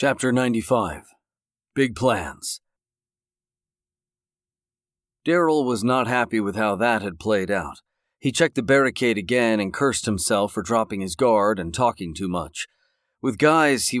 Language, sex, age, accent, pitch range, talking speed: English, male, 40-59, American, 100-125 Hz, 140 wpm